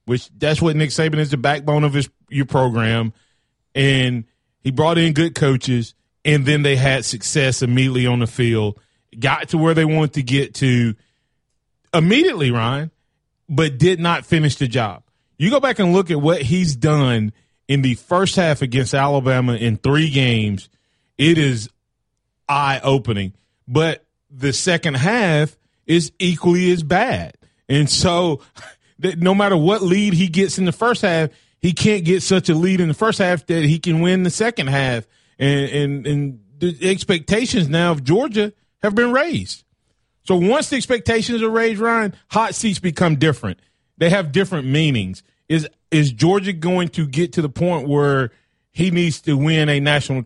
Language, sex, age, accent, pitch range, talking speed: English, male, 30-49, American, 130-175 Hz, 170 wpm